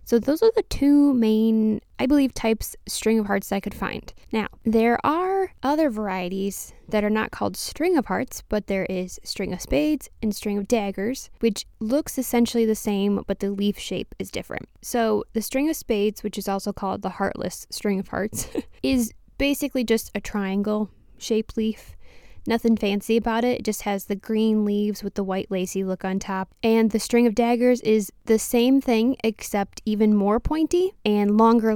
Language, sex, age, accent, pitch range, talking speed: English, female, 10-29, American, 200-235 Hz, 190 wpm